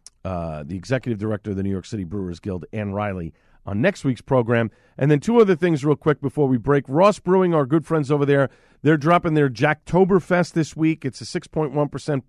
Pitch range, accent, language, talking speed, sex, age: 115-150 Hz, American, English, 210 wpm, male, 40-59